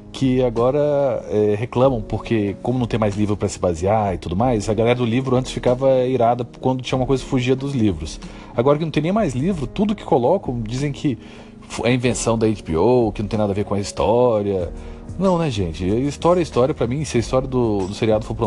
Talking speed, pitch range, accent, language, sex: 235 wpm, 105-145 Hz, Brazilian, English, male